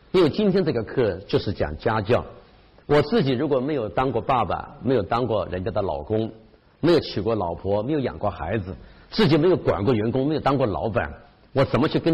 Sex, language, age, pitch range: male, Chinese, 50-69, 100-130 Hz